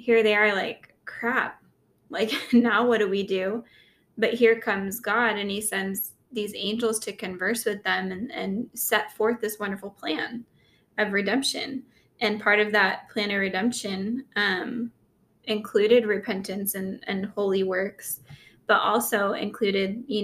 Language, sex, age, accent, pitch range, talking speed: English, female, 20-39, American, 205-235 Hz, 150 wpm